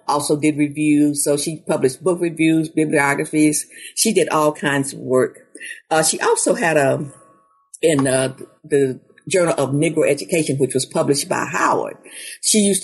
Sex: female